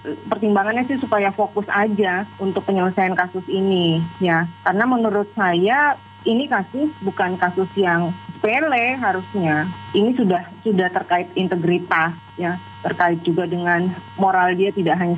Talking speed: 130 wpm